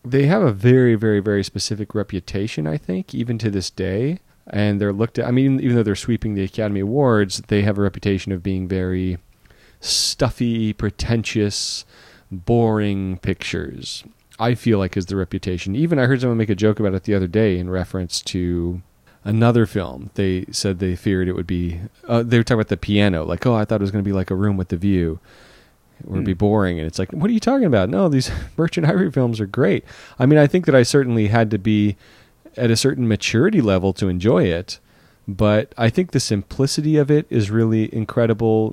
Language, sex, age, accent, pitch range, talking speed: English, male, 30-49, American, 95-115 Hz, 210 wpm